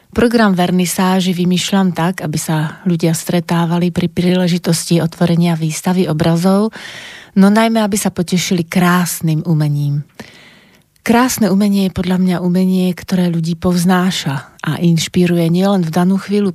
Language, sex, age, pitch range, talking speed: Slovak, female, 30-49, 165-190 Hz, 125 wpm